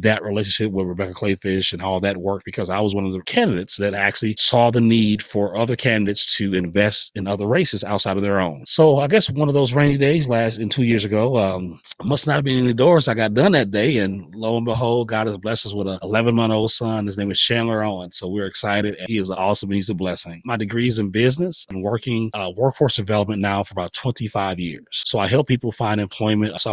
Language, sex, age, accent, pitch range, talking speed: English, male, 30-49, American, 100-120 Hz, 240 wpm